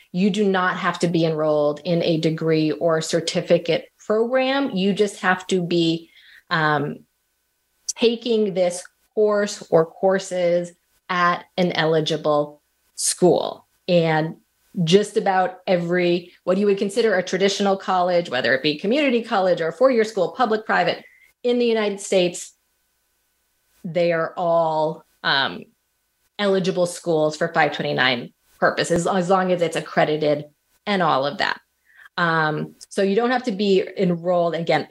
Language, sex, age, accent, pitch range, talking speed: English, female, 30-49, American, 165-195 Hz, 140 wpm